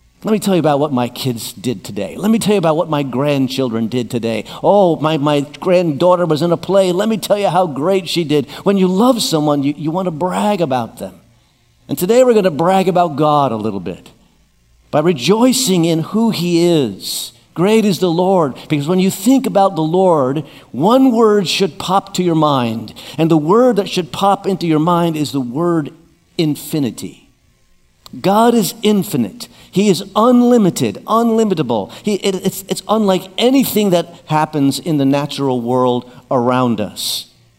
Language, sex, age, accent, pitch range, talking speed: English, male, 50-69, American, 145-200 Hz, 185 wpm